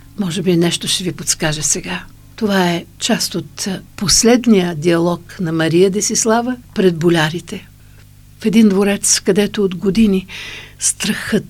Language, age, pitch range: Bulgarian, 60-79, 185-230 Hz